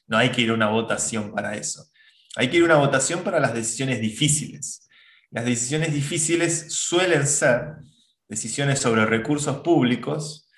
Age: 20-39